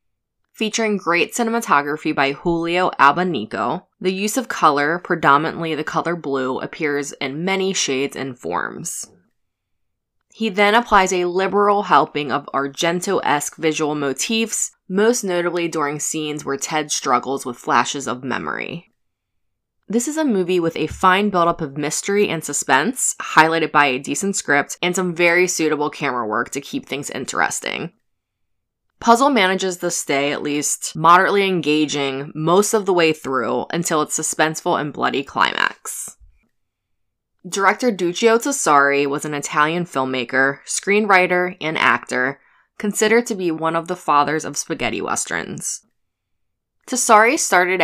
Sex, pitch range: female, 140-185 Hz